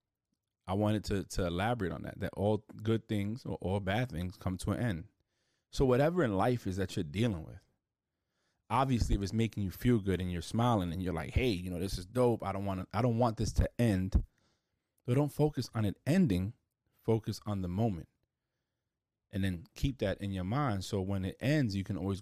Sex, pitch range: male, 95-115 Hz